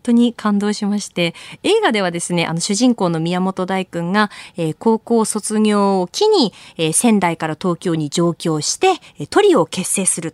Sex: female